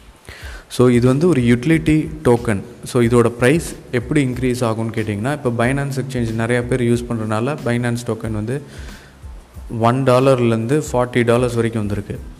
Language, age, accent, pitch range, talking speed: Tamil, 20-39, native, 110-130 Hz, 140 wpm